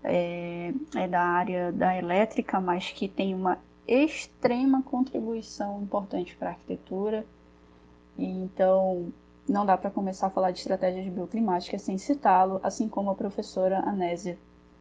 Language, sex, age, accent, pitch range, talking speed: Portuguese, female, 10-29, Brazilian, 180-230 Hz, 135 wpm